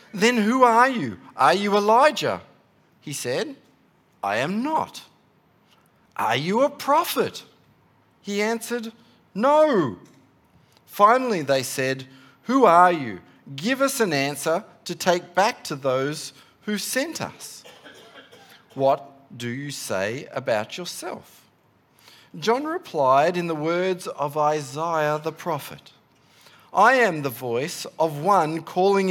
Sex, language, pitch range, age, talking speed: male, English, 145-215 Hz, 40-59, 120 wpm